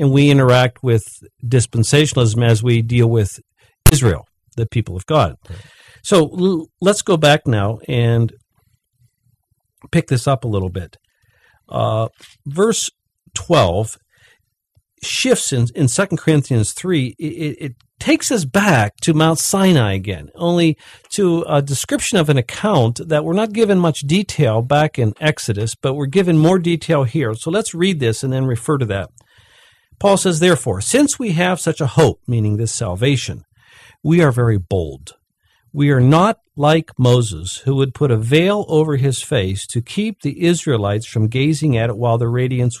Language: English